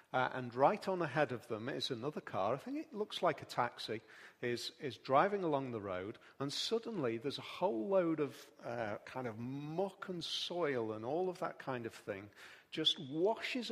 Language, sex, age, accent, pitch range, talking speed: English, male, 40-59, British, 140-210 Hz, 195 wpm